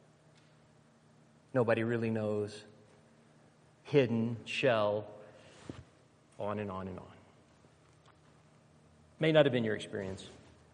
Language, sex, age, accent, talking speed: English, male, 40-59, American, 90 wpm